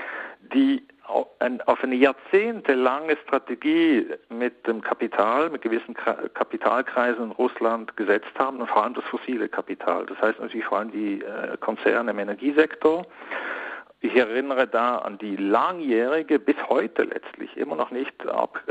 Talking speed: 135 wpm